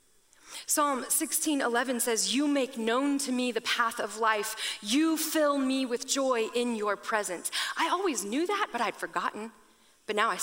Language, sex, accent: English, female, American